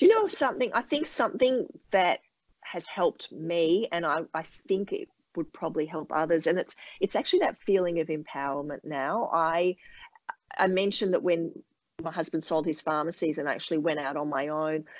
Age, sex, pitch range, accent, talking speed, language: 30-49, female, 155-190 Hz, Australian, 190 wpm, English